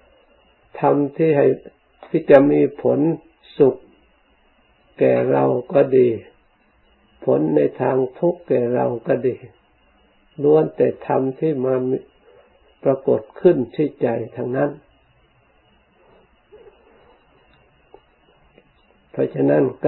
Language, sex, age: Thai, male, 60-79